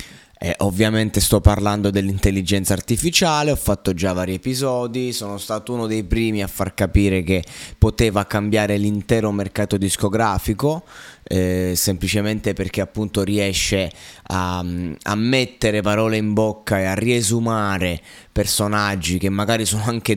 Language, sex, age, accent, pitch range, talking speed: Italian, male, 20-39, native, 95-115 Hz, 130 wpm